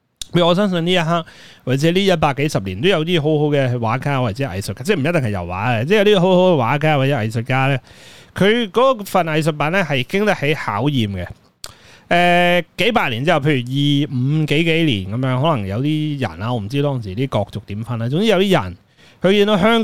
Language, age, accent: Chinese, 30-49, native